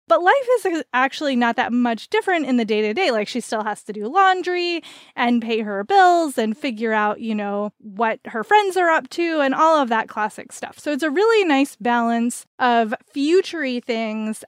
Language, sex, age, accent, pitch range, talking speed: English, female, 20-39, American, 225-290 Hz, 200 wpm